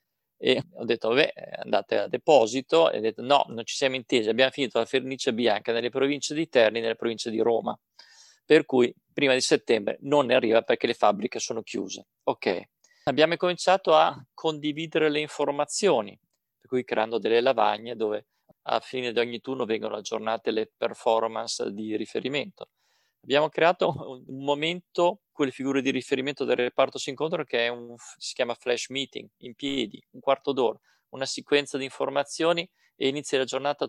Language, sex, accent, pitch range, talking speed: Italian, male, native, 120-145 Hz, 170 wpm